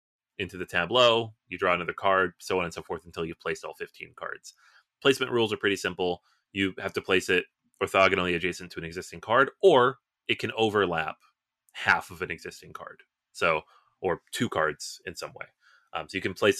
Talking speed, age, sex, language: 200 wpm, 30-49, male, English